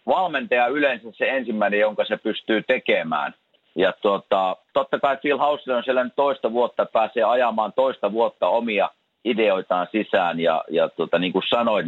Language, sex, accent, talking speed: Finnish, male, native, 160 wpm